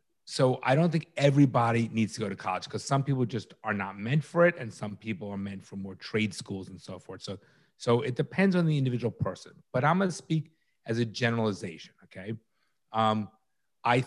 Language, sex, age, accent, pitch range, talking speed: English, male, 30-49, American, 110-140 Hz, 210 wpm